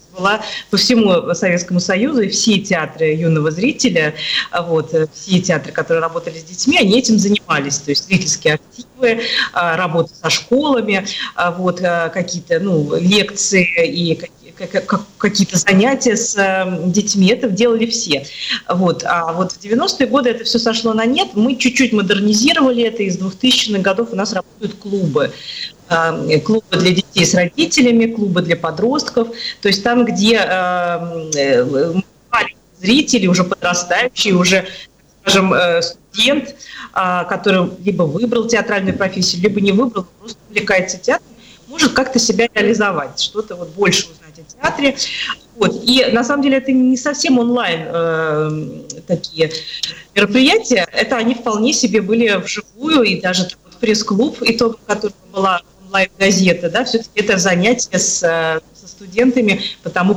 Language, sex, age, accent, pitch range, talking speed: Russian, female, 30-49, native, 175-230 Hz, 140 wpm